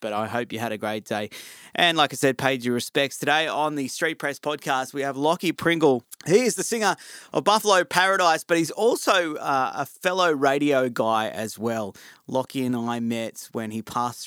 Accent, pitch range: Australian, 115-150 Hz